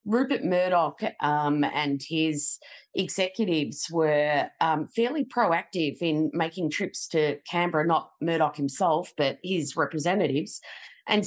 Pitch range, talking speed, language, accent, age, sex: 140-180 Hz, 115 wpm, English, Australian, 30-49, female